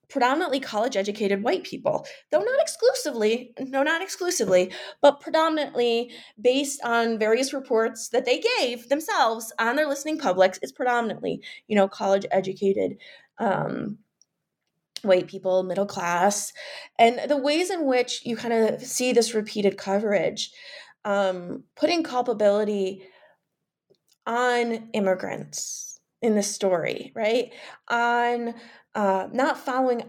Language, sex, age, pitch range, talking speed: English, female, 20-39, 195-255 Hz, 120 wpm